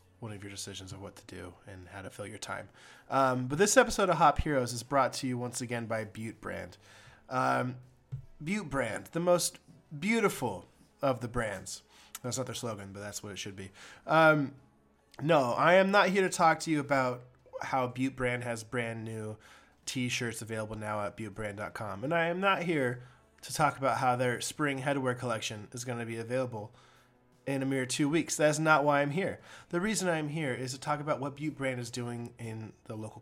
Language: English